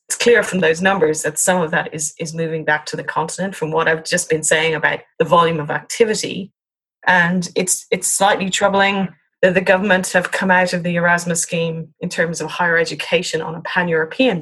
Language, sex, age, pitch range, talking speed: English, female, 30-49, 155-185 Hz, 210 wpm